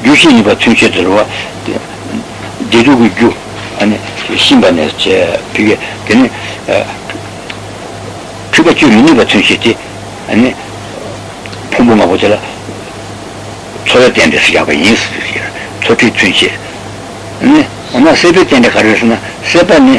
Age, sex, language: 60-79, male, Italian